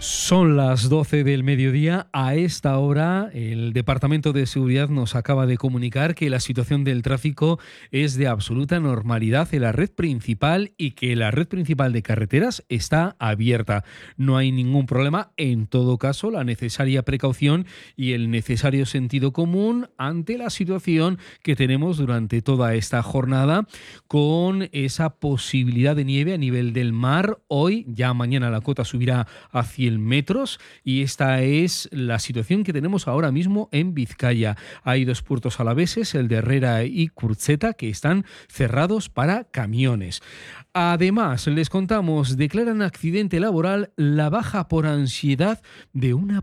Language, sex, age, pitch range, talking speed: Spanish, male, 40-59, 125-170 Hz, 150 wpm